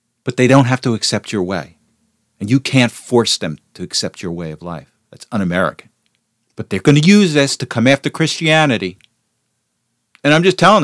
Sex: male